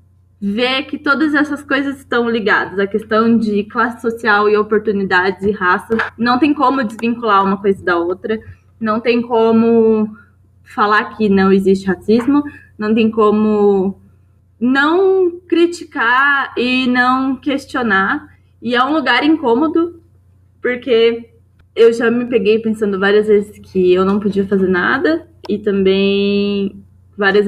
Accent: Brazilian